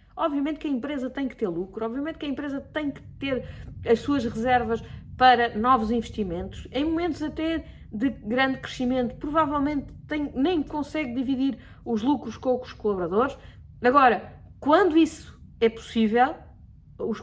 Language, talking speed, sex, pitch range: Portuguese, 145 wpm, female, 225-280 Hz